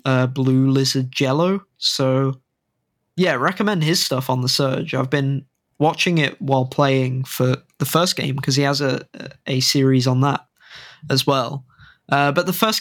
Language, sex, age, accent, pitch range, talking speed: English, male, 20-39, British, 135-160 Hz, 170 wpm